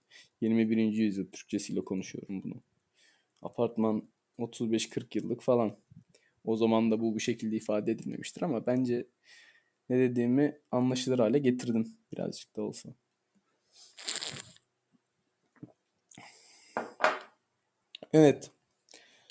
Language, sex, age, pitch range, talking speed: Turkish, male, 20-39, 115-140 Hz, 85 wpm